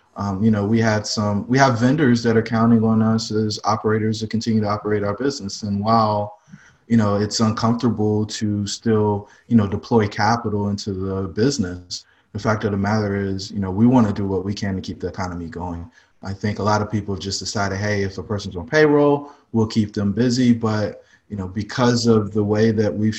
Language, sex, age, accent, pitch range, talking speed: English, male, 20-39, American, 95-110 Hz, 215 wpm